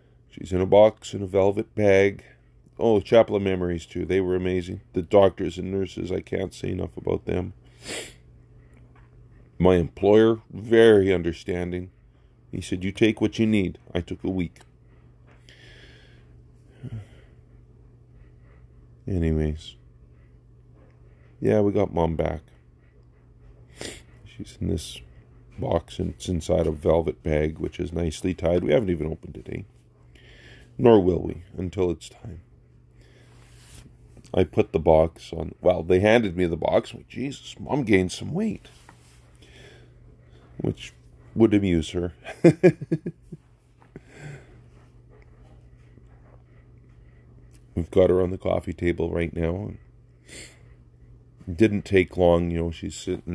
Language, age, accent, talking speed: English, 40-59, American, 120 wpm